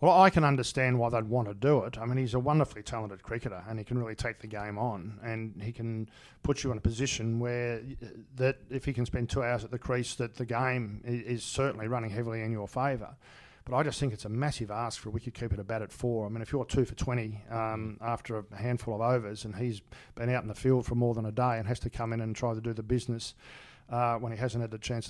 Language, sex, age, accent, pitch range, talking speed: English, male, 40-59, Australian, 115-130 Hz, 270 wpm